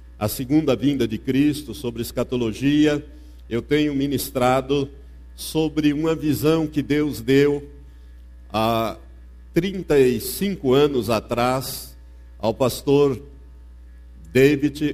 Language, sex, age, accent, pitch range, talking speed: Portuguese, male, 60-79, Brazilian, 95-145 Hz, 90 wpm